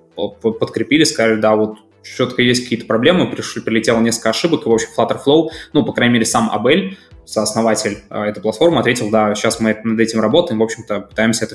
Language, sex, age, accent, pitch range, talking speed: Russian, male, 20-39, native, 110-120 Hz, 195 wpm